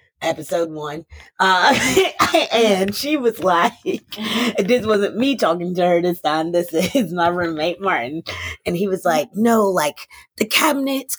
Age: 20-39